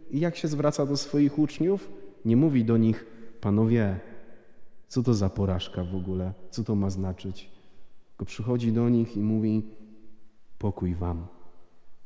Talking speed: 150 wpm